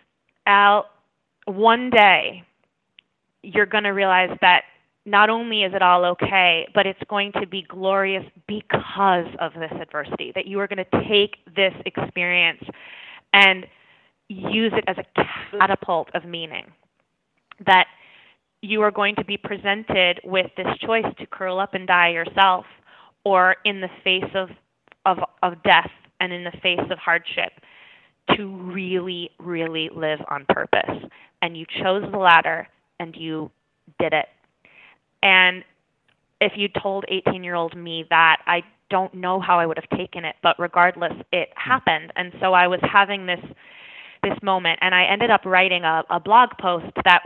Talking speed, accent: 155 wpm, American